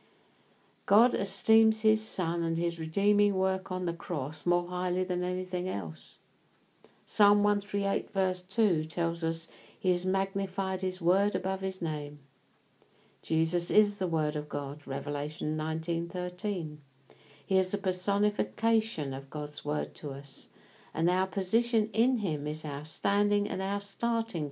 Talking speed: 140 wpm